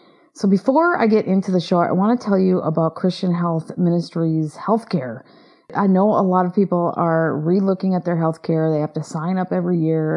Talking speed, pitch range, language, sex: 205 wpm, 155-190 Hz, English, female